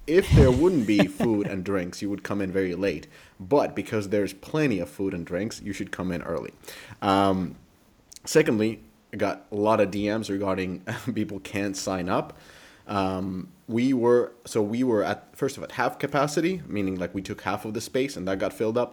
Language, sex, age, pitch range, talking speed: English, male, 30-49, 95-120 Hz, 205 wpm